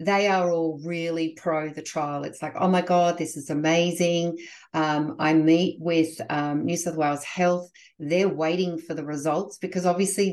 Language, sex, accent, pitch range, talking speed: English, female, Australian, 160-205 Hz, 180 wpm